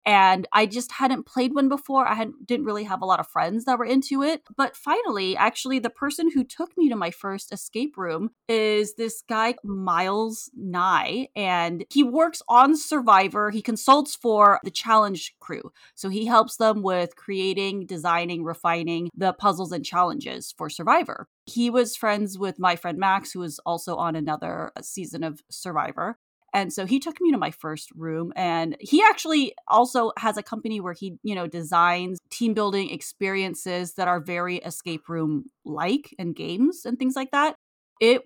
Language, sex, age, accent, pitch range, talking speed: English, female, 30-49, American, 180-245 Hz, 180 wpm